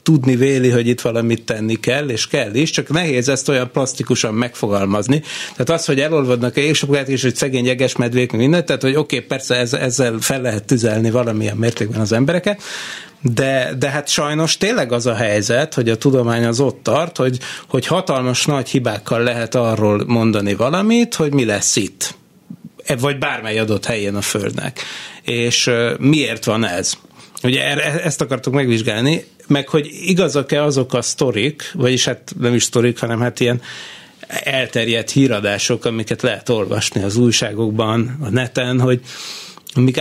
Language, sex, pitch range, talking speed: Hungarian, male, 115-145 Hz, 165 wpm